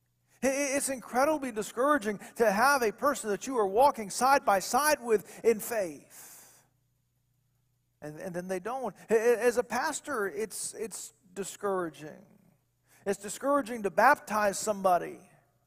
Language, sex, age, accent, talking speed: English, male, 50-69, American, 125 wpm